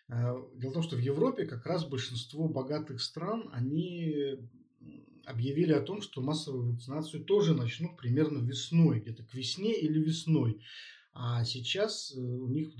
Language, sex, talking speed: Russian, male, 145 wpm